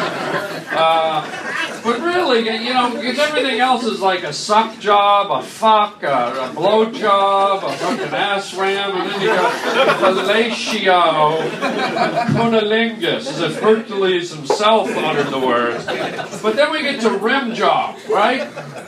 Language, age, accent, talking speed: English, 40-59, American, 140 wpm